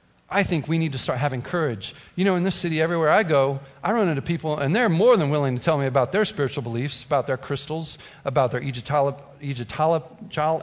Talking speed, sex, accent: 215 wpm, male, American